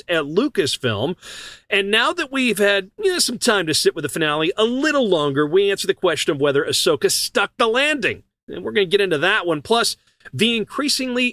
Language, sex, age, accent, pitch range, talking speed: English, male, 40-59, American, 145-220 Hz, 200 wpm